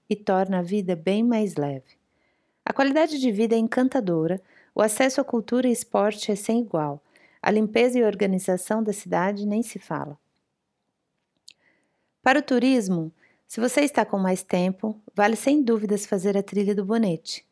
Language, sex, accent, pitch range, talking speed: Portuguese, female, Brazilian, 185-235 Hz, 165 wpm